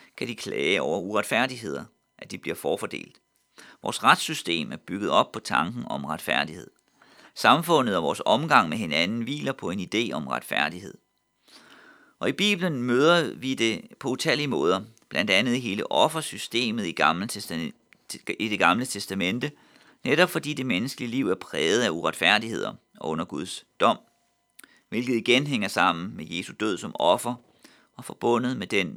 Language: Danish